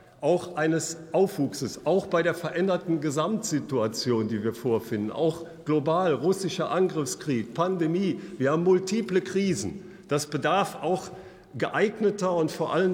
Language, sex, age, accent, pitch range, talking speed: German, male, 50-69, German, 165-205 Hz, 125 wpm